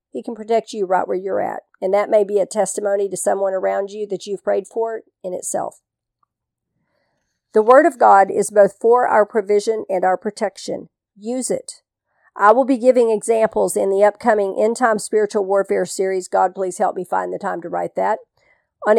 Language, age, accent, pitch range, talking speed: English, 50-69, American, 190-220 Hz, 195 wpm